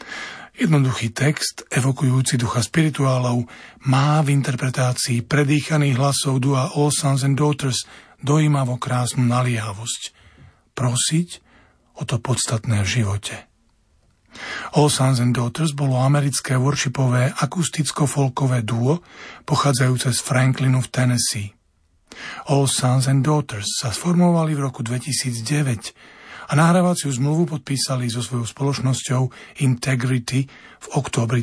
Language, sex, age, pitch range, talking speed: Slovak, male, 40-59, 120-150 Hz, 110 wpm